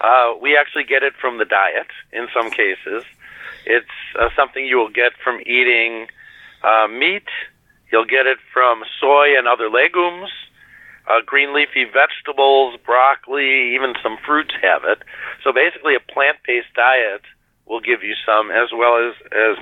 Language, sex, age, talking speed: English, male, 50-69, 160 wpm